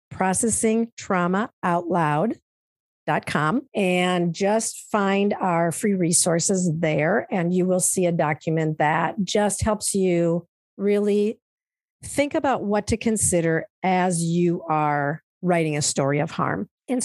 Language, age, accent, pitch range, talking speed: English, 50-69, American, 170-225 Hz, 115 wpm